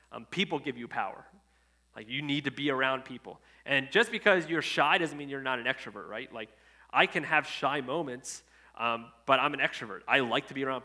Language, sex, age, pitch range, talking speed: English, male, 30-49, 130-170 Hz, 220 wpm